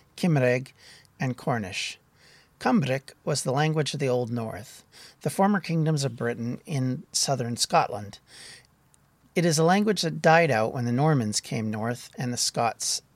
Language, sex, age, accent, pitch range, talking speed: English, male, 50-69, American, 120-155 Hz, 155 wpm